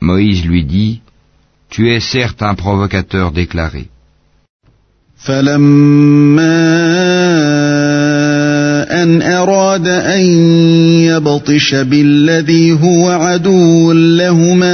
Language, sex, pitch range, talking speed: Arabic, male, 145-165 Hz, 40 wpm